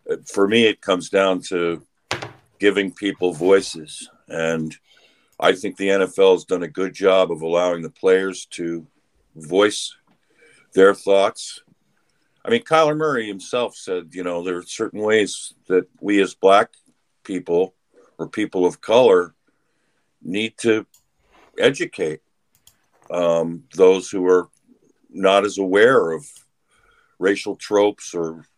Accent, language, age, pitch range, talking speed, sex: American, English, 50-69, 90-105 Hz, 130 wpm, male